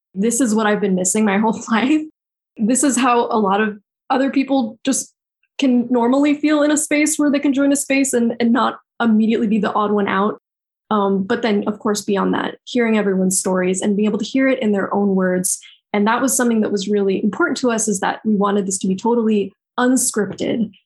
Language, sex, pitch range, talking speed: English, female, 200-255 Hz, 225 wpm